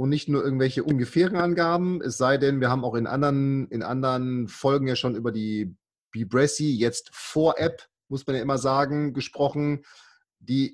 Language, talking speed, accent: German, 175 wpm, German